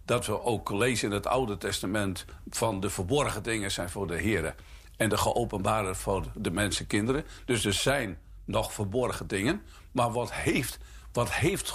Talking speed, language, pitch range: 170 wpm, Dutch, 80-110 Hz